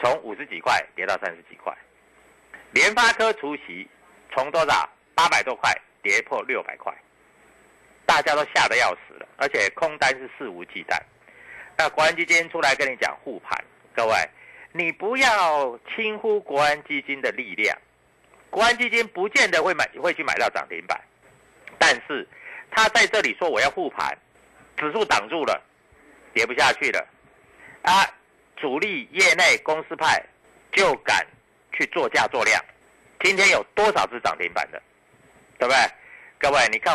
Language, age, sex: Chinese, 50-69, male